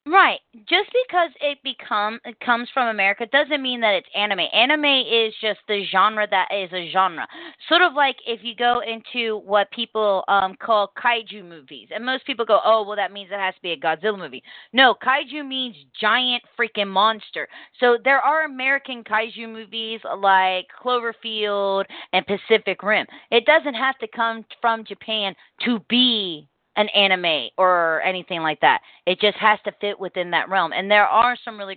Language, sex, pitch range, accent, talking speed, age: English, female, 185-235 Hz, American, 180 wpm, 30-49